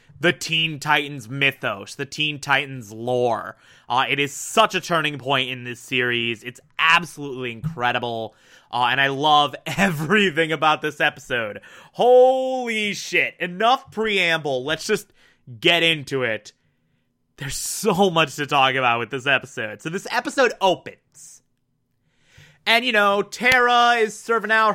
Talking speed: 140 wpm